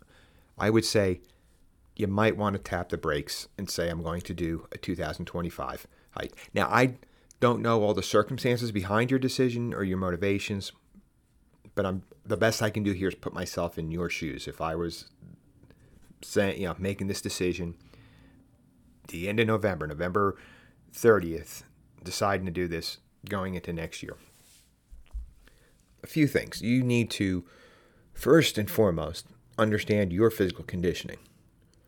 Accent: American